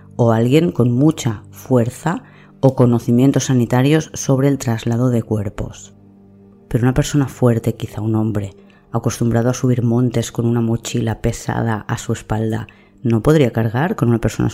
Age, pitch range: 20-39, 110-140 Hz